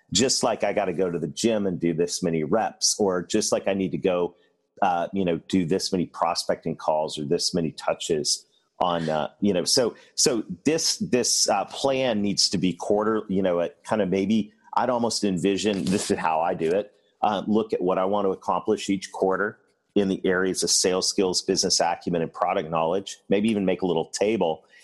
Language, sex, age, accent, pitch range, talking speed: English, male, 40-59, American, 85-105 Hz, 215 wpm